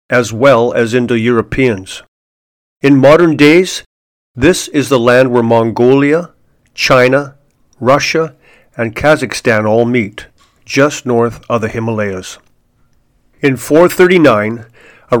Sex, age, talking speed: male, 50-69, 110 wpm